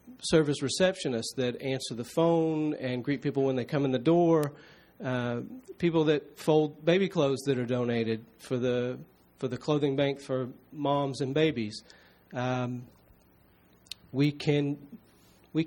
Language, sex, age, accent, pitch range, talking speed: English, male, 40-59, American, 125-150 Hz, 145 wpm